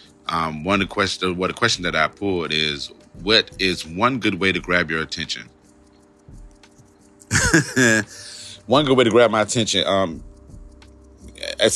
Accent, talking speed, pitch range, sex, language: American, 145 wpm, 75-105 Hz, male, English